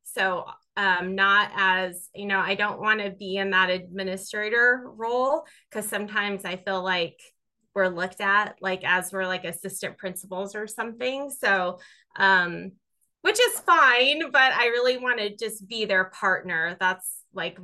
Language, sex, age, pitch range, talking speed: English, female, 20-39, 180-220 Hz, 160 wpm